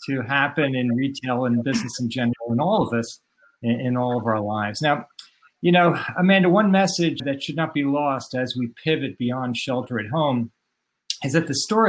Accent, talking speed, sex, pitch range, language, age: American, 200 wpm, male, 130-170 Hz, English, 50-69